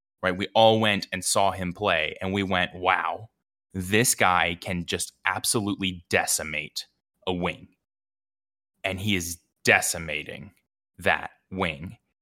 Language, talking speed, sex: English, 130 wpm, male